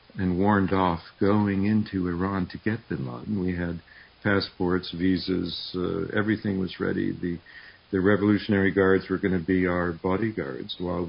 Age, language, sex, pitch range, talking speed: 50-69, English, male, 90-100 Hz, 155 wpm